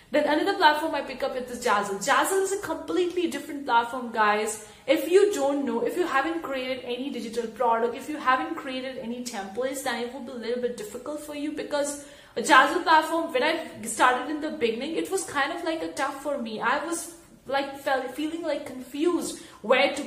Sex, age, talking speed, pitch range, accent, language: female, 20-39, 210 wpm, 250-310 Hz, Indian, English